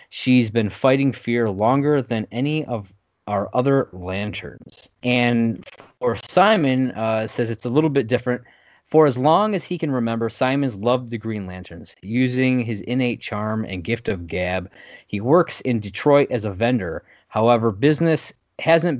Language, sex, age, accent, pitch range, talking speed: English, male, 20-39, American, 110-140 Hz, 160 wpm